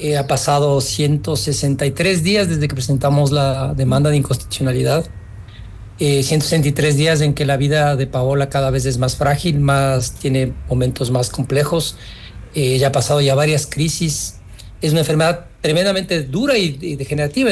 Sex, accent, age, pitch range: male, Mexican, 40-59, 135-160 Hz